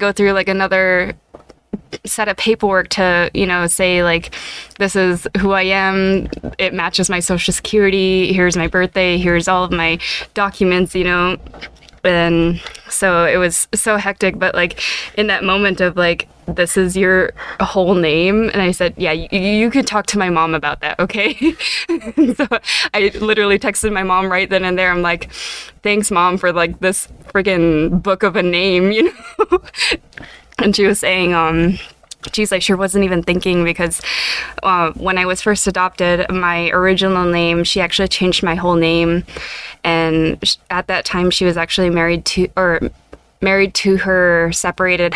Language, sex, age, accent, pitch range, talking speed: English, female, 20-39, American, 175-200 Hz, 170 wpm